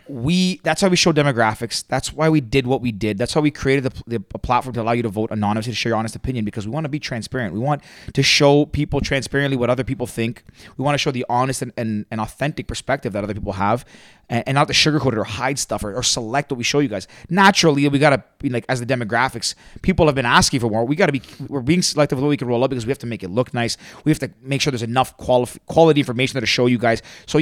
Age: 30-49